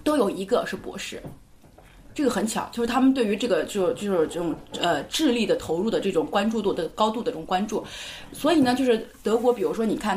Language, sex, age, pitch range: Chinese, female, 20-39, 195-250 Hz